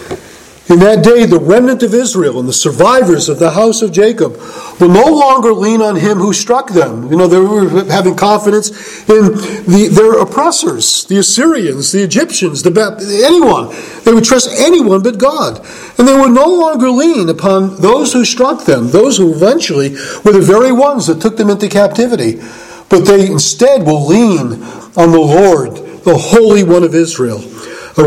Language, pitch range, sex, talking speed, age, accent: English, 175-235 Hz, male, 175 wpm, 50-69, American